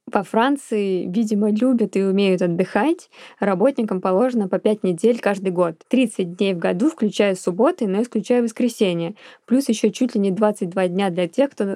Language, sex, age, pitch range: Russian, female, 20-39, 195-235 Hz